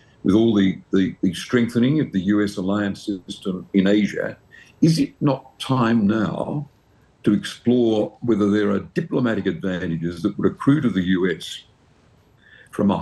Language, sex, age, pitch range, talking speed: English, male, 60-79, 95-110 Hz, 150 wpm